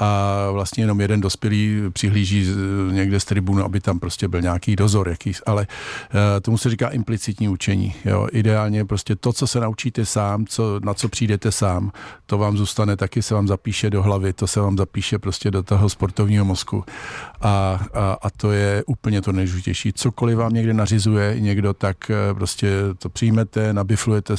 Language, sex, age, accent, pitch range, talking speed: Czech, male, 50-69, native, 100-110 Hz, 175 wpm